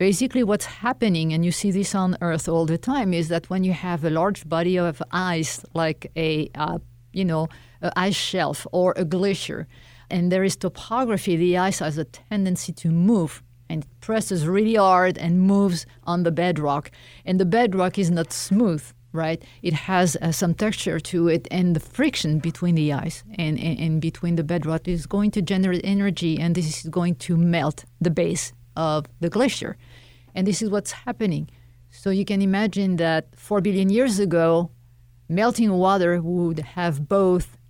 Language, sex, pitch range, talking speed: English, female, 160-195 Hz, 180 wpm